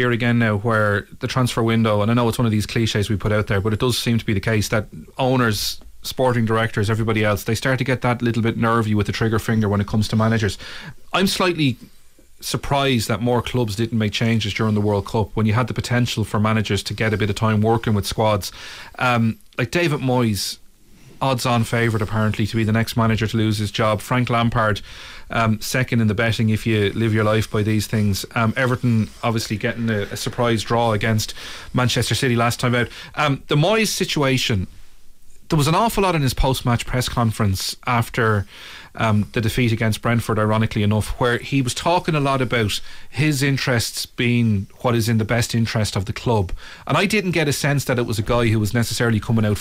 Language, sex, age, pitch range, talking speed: English, male, 30-49, 110-125 Hz, 220 wpm